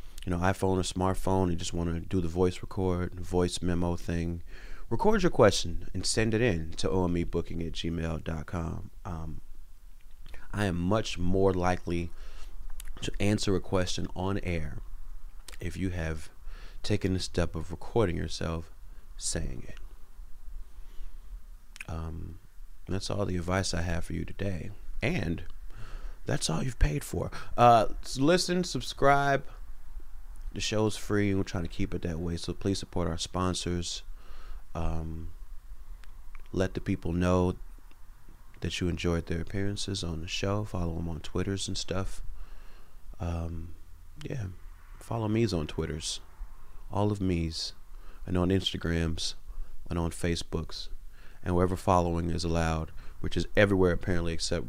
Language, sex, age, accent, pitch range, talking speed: English, male, 30-49, American, 80-95 Hz, 140 wpm